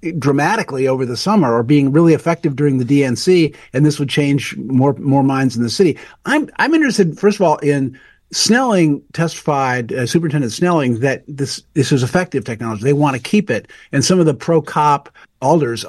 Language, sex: English, male